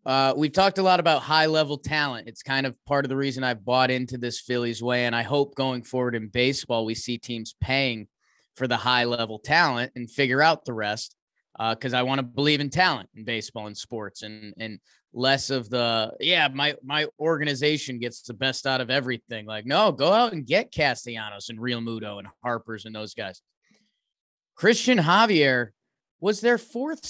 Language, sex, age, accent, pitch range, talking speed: English, male, 20-39, American, 120-165 Hz, 200 wpm